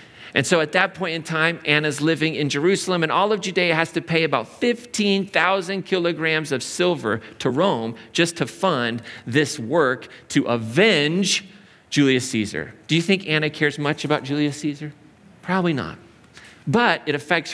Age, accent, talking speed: 40-59, American, 165 wpm